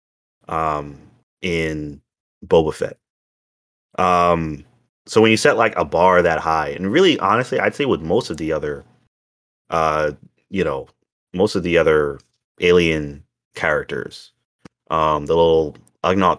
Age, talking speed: 30-49, 135 wpm